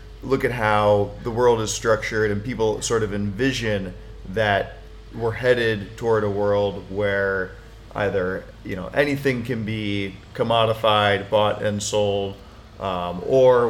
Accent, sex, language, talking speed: American, male, English, 135 wpm